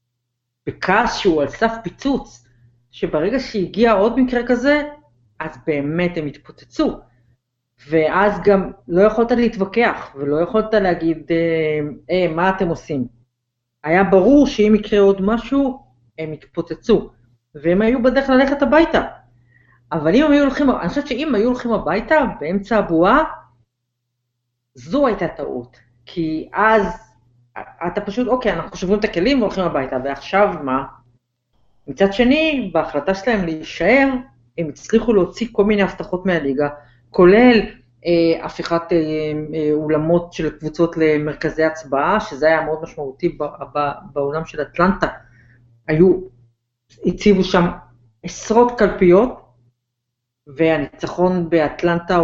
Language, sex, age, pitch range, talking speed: Hebrew, female, 40-59, 140-205 Hz, 115 wpm